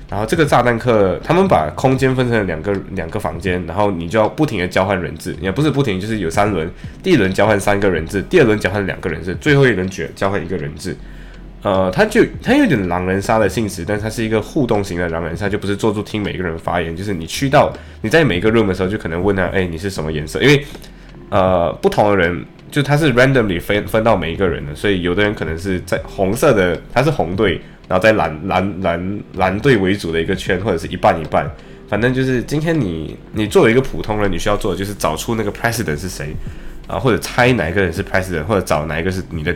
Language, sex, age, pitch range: Chinese, male, 10-29, 90-110 Hz